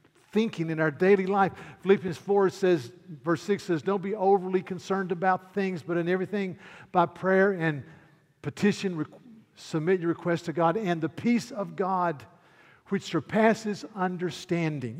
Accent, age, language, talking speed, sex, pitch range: American, 50-69, English, 150 wpm, male, 145-190 Hz